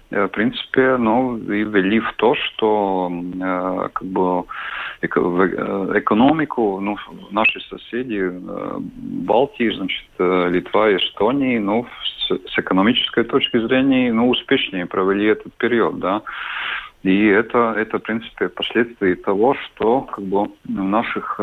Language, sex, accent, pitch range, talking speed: Russian, male, native, 95-115 Hz, 120 wpm